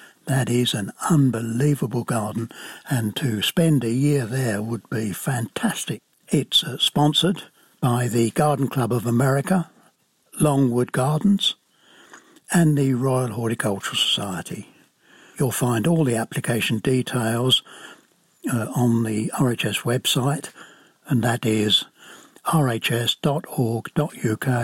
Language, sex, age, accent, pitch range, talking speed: English, male, 60-79, British, 115-145 Hz, 105 wpm